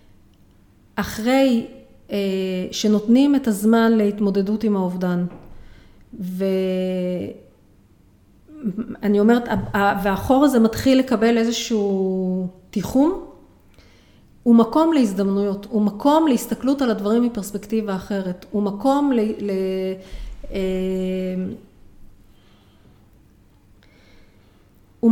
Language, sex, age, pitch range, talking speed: Hebrew, female, 40-59, 190-250 Hz, 65 wpm